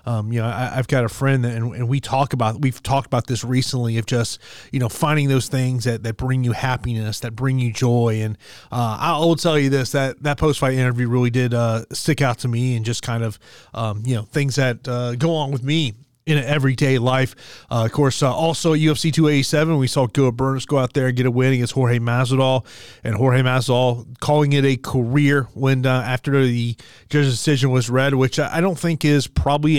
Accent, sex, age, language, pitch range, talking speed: American, male, 30-49, English, 125-145 Hz, 225 wpm